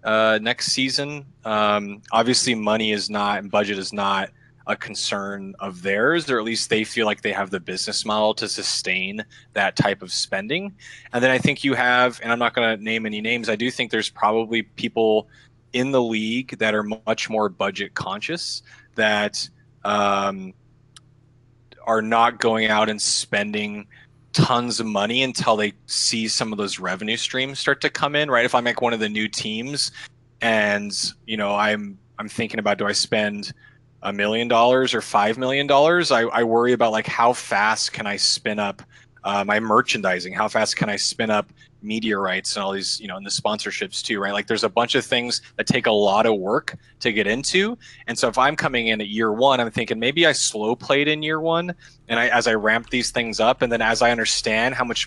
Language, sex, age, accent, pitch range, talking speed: English, male, 20-39, American, 105-130 Hz, 205 wpm